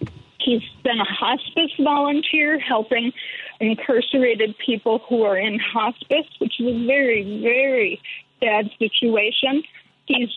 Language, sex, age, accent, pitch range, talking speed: English, female, 40-59, American, 225-290 Hz, 115 wpm